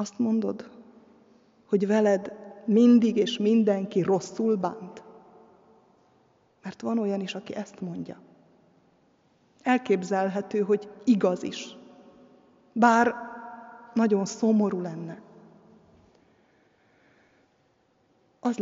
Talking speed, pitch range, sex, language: 80 wpm, 195-235 Hz, female, Hungarian